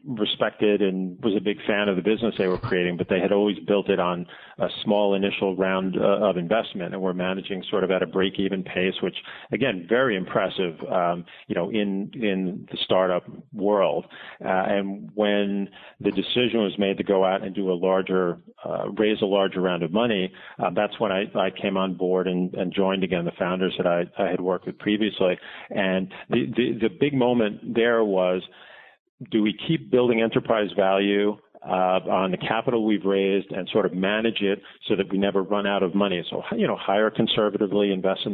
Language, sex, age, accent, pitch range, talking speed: English, male, 40-59, American, 95-105 Hz, 205 wpm